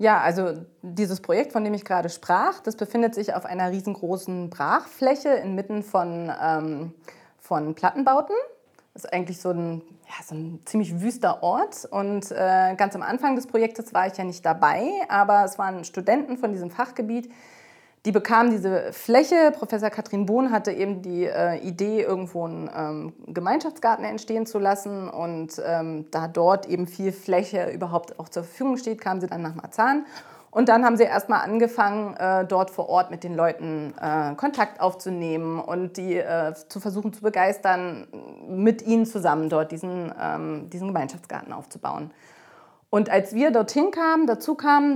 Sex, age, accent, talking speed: female, 30-49, German, 165 wpm